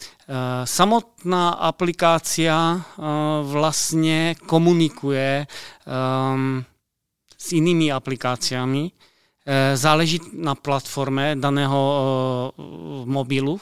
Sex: male